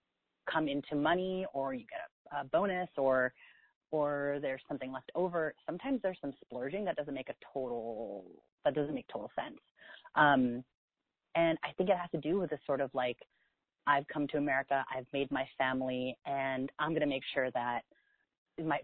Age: 30-49